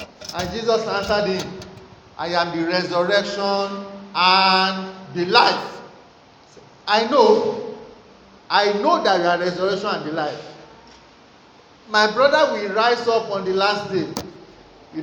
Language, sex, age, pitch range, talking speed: English, male, 50-69, 195-255 Hz, 130 wpm